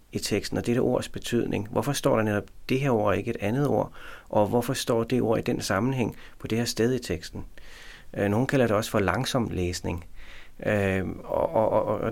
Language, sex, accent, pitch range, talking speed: Danish, male, native, 95-120 Hz, 210 wpm